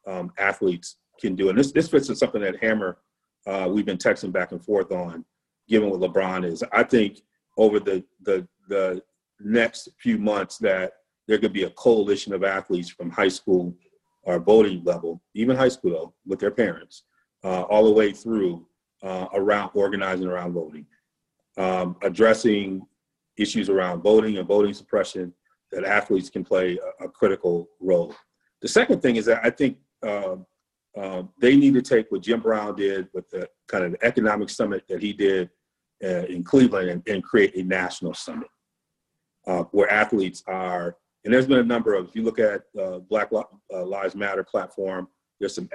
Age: 40-59